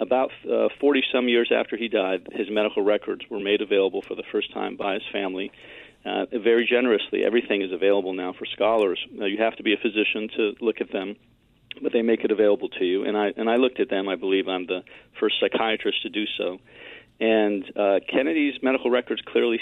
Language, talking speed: English, 210 wpm